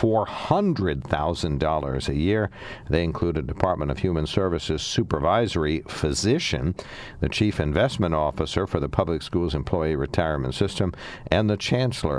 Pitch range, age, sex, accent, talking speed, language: 80-105 Hz, 60-79, male, American, 125 wpm, English